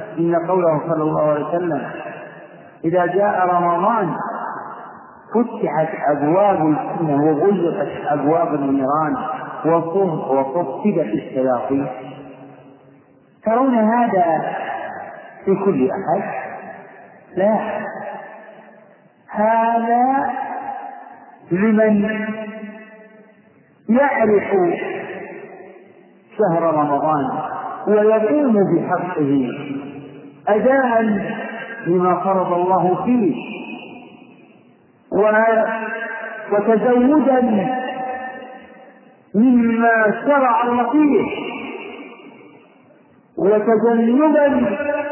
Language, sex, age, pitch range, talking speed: Arabic, male, 50-69, 165-230 Hz, 55 wpm